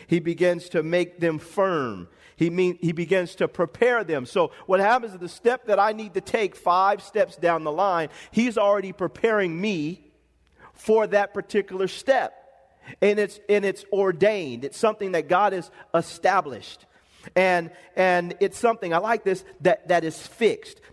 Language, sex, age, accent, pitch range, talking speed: English, male, 40-59, American, 175-230 Hz, 170 wpm